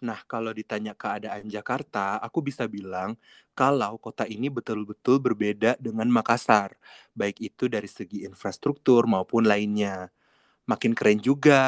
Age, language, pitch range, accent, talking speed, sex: 30-49, English, 105-130 Hz, Indonesian, 130 wpm, male